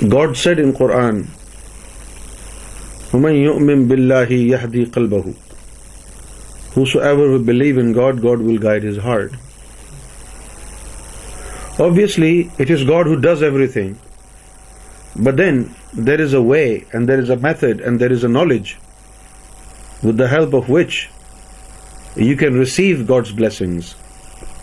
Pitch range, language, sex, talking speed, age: 120-160 Hz, Urdu, male, 115 wpm, 50-69